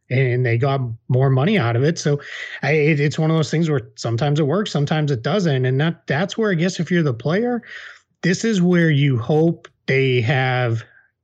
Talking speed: 215 wpm